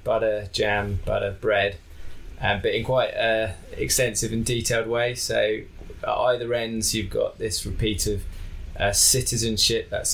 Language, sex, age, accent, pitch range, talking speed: English, male, 20-39, British, 90-110 Hz, 150 wpm